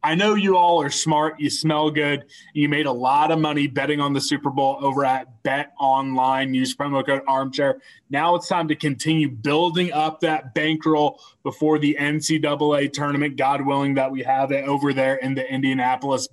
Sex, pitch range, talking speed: male, 135-155 Hz, 195 wpm